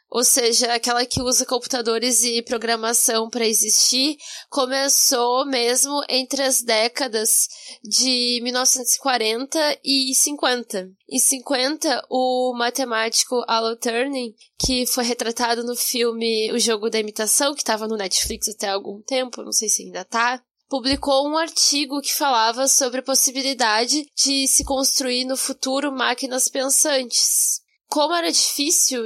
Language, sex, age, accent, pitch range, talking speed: Portuguese, female, 10-29, Brazilian, 235-275 Hz, 130 wpm